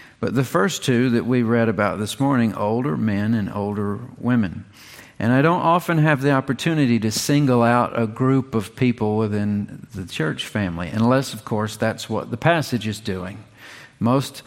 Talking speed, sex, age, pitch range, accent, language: 180 wpm, male, 50-69, 110-135 Hz, American, English